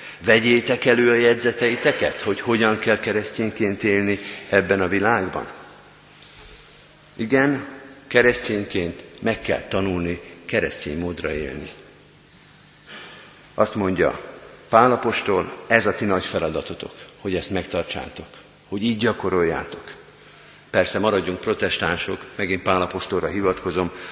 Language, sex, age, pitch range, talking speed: Hungarian, male, 50-69, 90-110 Hz, 100 wpm